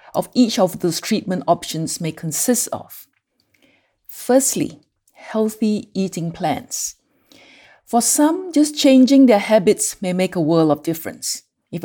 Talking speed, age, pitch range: 130 wpm, 50-69, 165-235 Hz